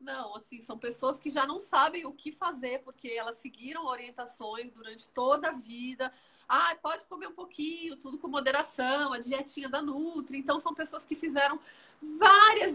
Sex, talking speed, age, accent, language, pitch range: female, 175 wpm, 30-49, Brazilian, Portuguese, 255-315 Hz